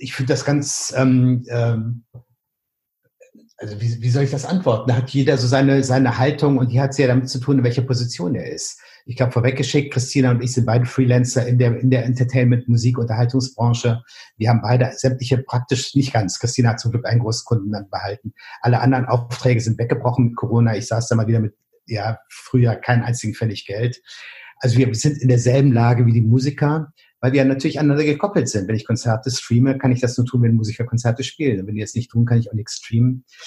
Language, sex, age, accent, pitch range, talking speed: German, male, 50-69, German, 115-130 Hz, 215 wpm